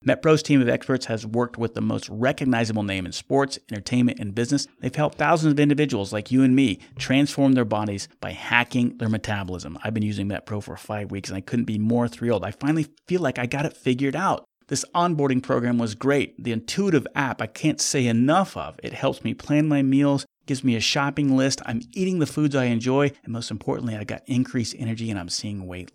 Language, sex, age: English, male, 30-49